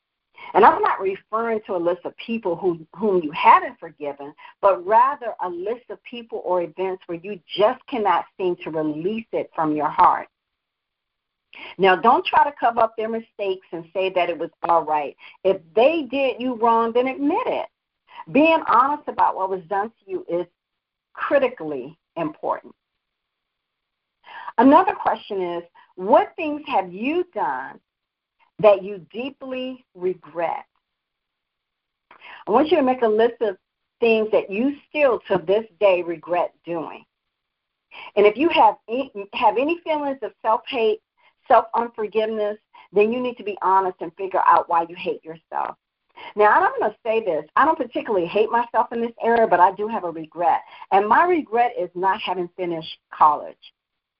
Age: 50-69